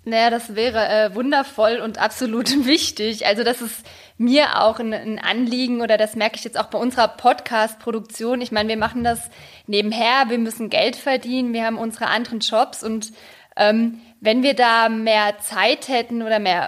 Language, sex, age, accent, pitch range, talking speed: German, female, 20-39, German, 215-250 Hz, 180 wpm